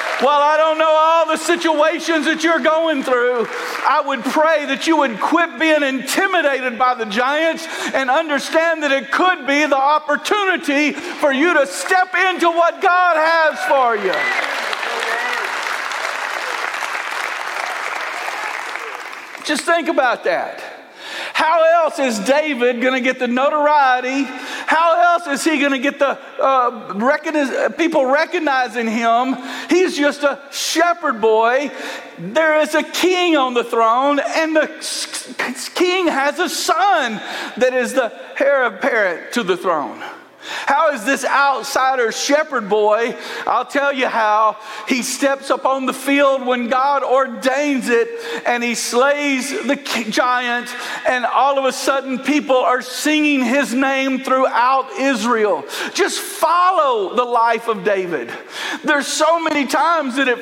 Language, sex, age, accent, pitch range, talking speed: English, male, 50-69, American, 255-315 Hz, 135 wpm